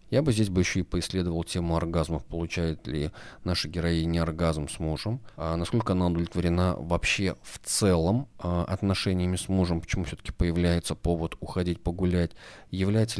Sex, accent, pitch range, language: male, native, 85-95 Hz, Russian